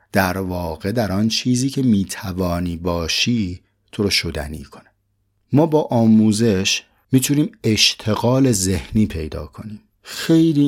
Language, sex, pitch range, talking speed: Persian, male, 95-125 Hz, 120 wpm